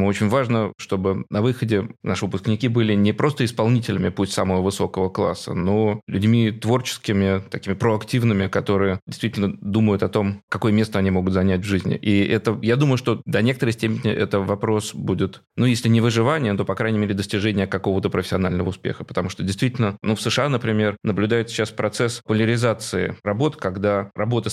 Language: Russian